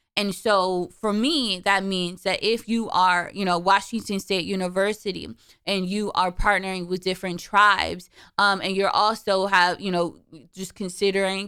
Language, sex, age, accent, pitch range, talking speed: English, female, 20-39, American, 180-205 Hz, 160 wpm